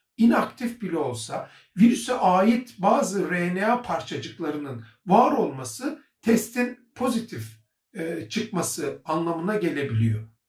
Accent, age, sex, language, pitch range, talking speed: native, 60-79, male, Turkish, 160-225 Hz, 90 wpm